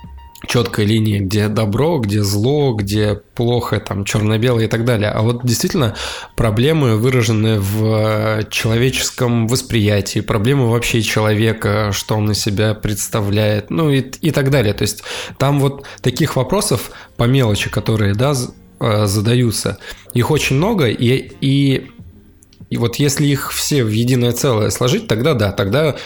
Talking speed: 145 wpm